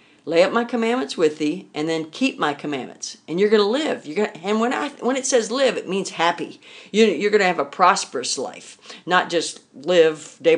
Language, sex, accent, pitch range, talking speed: English, female, American, 155-220 Hz, 225 wpm